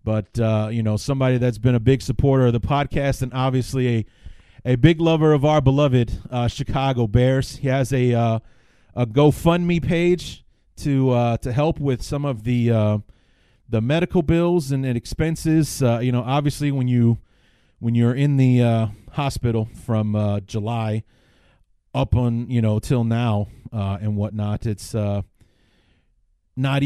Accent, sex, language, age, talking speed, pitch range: American, male, English, 30-49, 165 wpm, 115-145 Hz